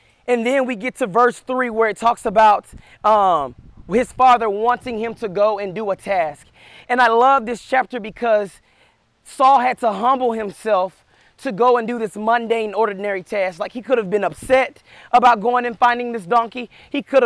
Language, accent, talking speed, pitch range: English, American, 190 wpm, 205-245 Hz